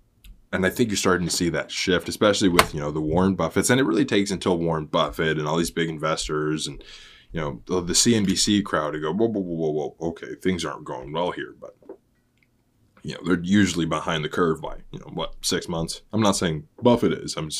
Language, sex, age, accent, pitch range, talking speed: English, male, 20-39, American, 80-110 Hz, 235 wpm